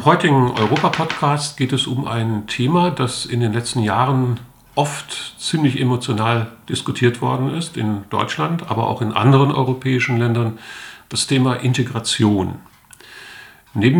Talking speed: 130 wpm